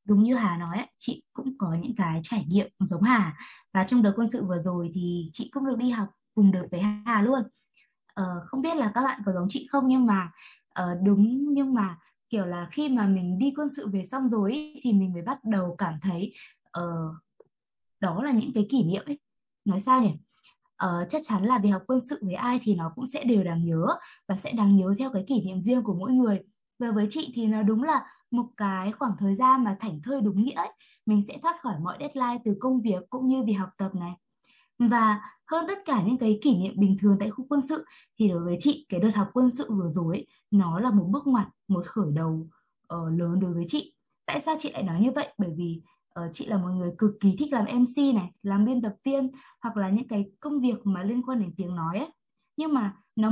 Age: 20-39